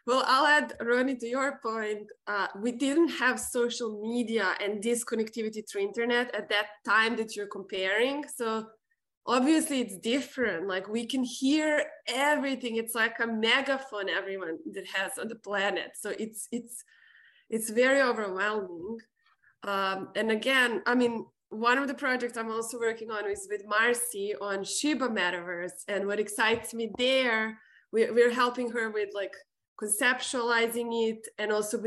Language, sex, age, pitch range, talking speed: English, female, 20-39, 210-255 Hz, 155 wpm